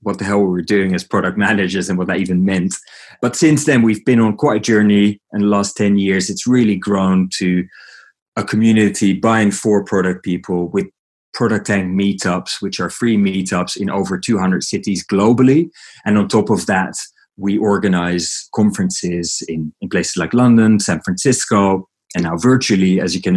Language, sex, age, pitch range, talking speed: English, male, 30-49, 95-115 Hz, 185 wpm